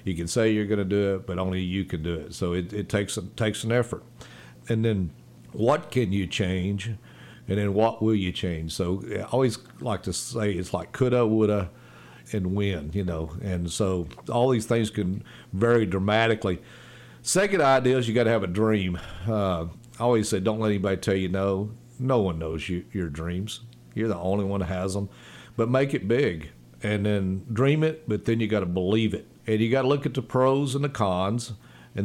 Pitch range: 95-120 Hz